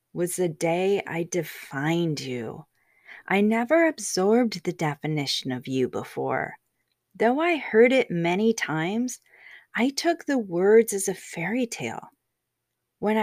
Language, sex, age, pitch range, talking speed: English, female, 30-49, 175-225 Hz, 130 wpm